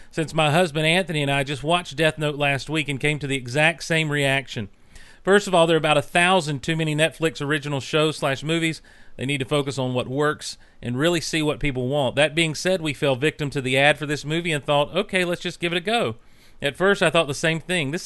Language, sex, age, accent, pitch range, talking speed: English, male, 40-59, American, 130-170 Hz, 255 wpm